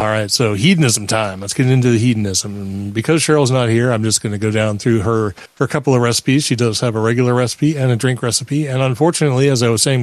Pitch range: 110-145 Hz